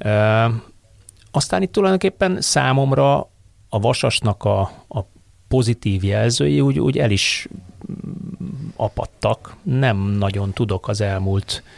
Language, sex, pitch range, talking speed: Hungarian, male, 95-110 Hz, 105 wpm